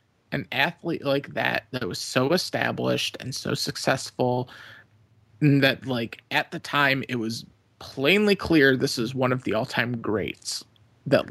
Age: 30-49